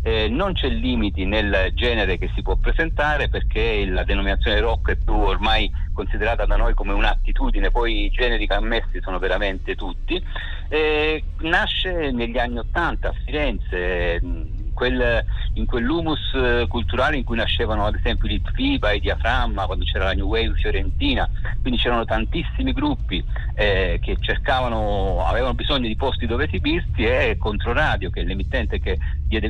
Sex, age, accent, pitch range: male, 50-69, native, 85-110 Hz